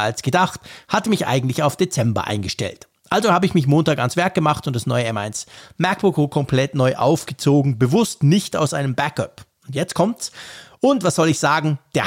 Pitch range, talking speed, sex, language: 135-180 Hz, 190 wpm, male, German